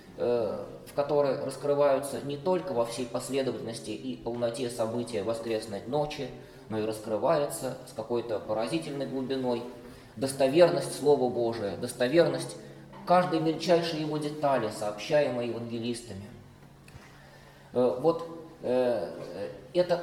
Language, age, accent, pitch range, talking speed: Russian, 20-39, native, 125-165 Hz, 95 wpm